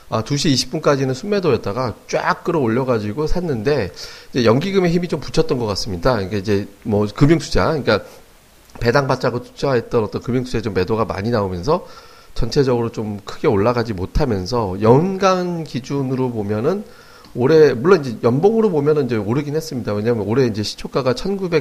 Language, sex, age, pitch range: Korean, male, 40-59, 110-150 Hz